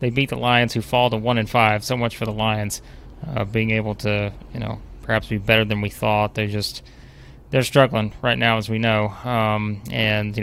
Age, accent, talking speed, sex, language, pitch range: 20-39, American, 215 wpm, male, English, 105-125 Hz